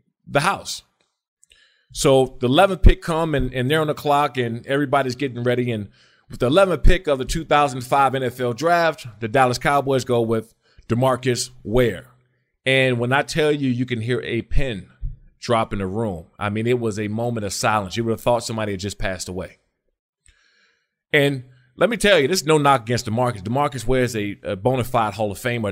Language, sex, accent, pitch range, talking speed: English, male, American, 115-140 Hz, 200 wpm